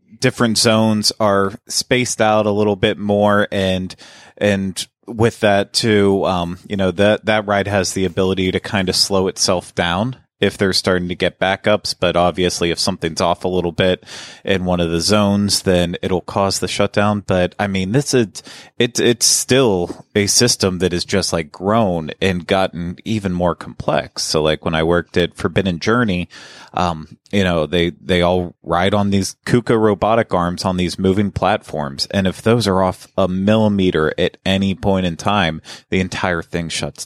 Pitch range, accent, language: 90-105 Hz, American, English